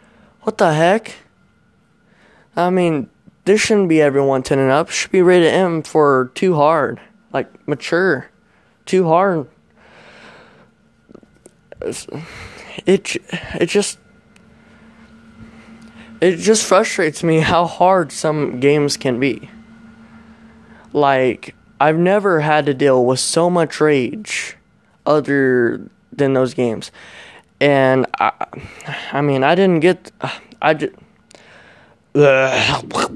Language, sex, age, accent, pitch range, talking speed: English, male, 20-39, American, 140-205 Hz, 110 wpm